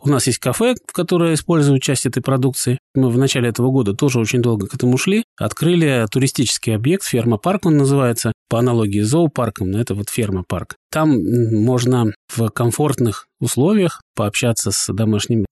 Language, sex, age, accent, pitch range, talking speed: Russian, male, 20-39, native, 115-155 Hz, 160 wpm